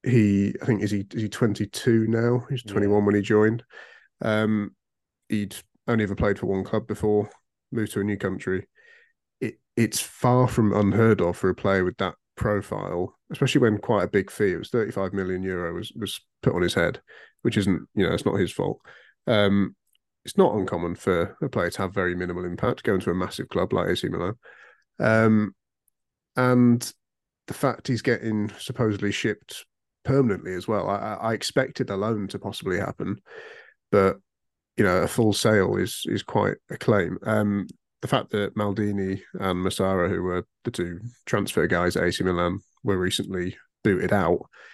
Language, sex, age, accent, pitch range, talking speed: English, male, 30-49, British, 95-110 Hz, 180 wpm